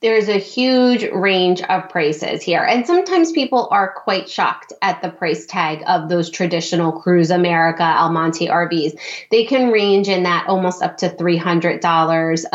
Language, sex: English, female